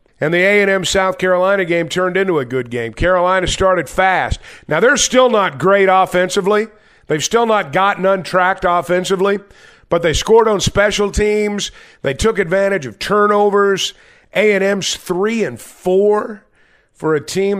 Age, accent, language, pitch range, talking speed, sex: 50-69, American, English, 170-210 Hz, 145 wpm, male